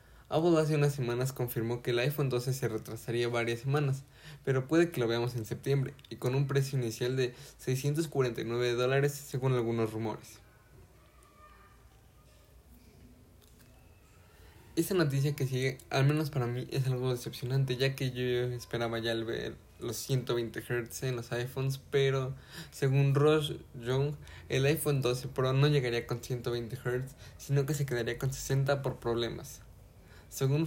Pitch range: 120-135 Hz